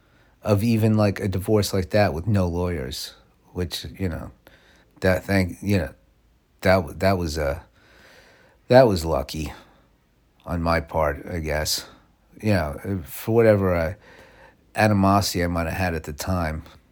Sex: male